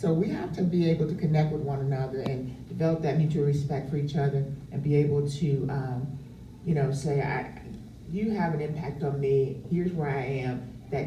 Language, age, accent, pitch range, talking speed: English, 40-59, American, 130-160 Hz, 210 wpm